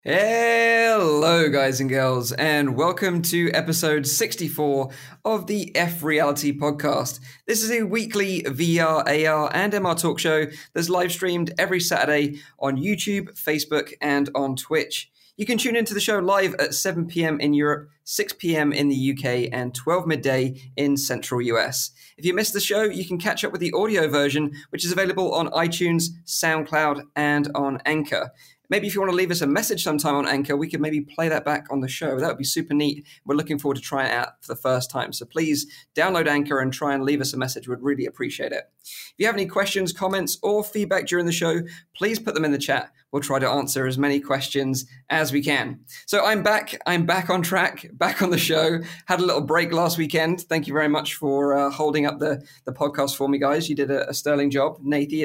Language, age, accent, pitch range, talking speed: English, 20-39, British, 140-180 Hz, 215 wpm